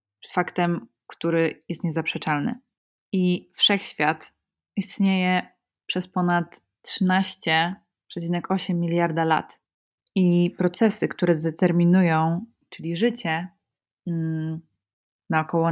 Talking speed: 75 wpm